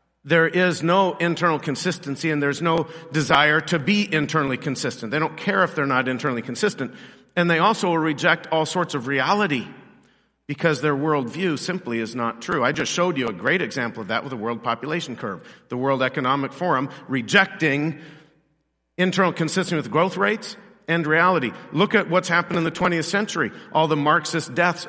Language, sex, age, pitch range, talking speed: English, male, 50-69, 135-175 Hz, 180 wpm